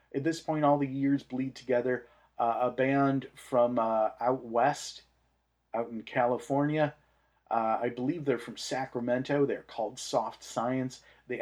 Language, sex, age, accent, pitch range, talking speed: English, male, 40-59, American, 115-135 Hz, 150 wpm